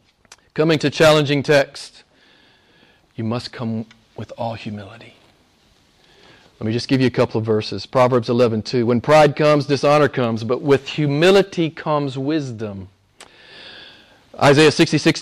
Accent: American